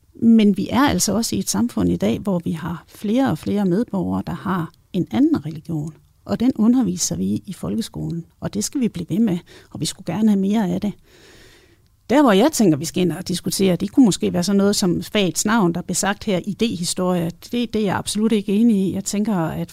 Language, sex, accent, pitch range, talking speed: Danish, female, native, 175-215 Hz, 235 wpm